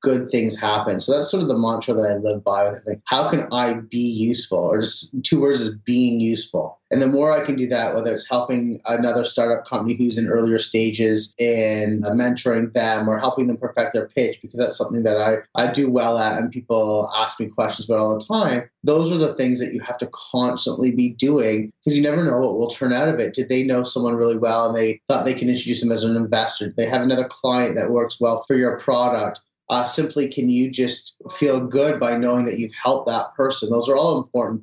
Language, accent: English, American